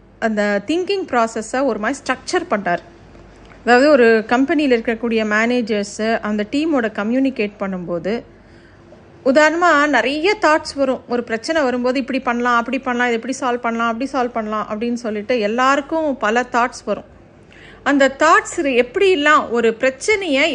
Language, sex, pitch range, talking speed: Tamil, female, 230-300 Hz, 130 wpm